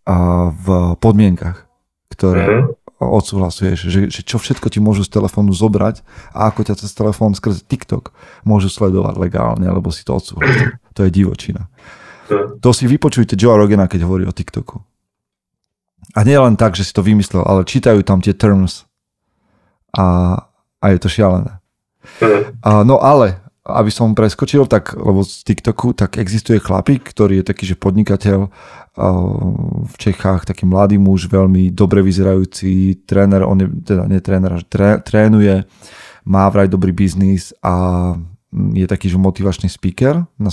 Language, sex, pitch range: Slovak, male, 95-110 Hz